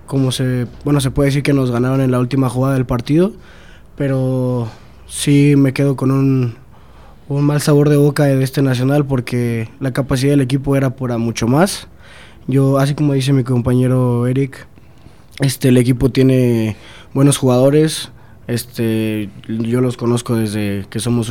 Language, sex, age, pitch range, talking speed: Spanish, male, 20-39, 120-135 Hz, 165 wpm